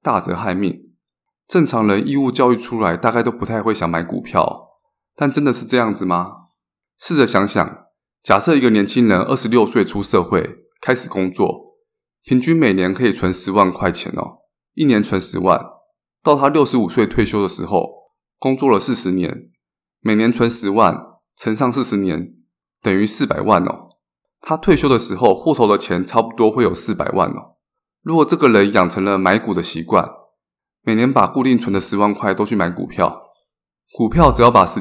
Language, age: Chinese, 20-39